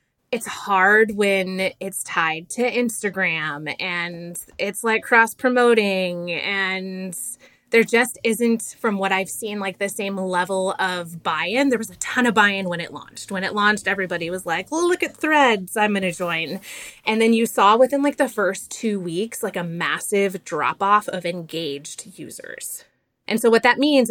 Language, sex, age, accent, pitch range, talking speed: English, female, 20-39, American, 185-230 Hz, 170 wpm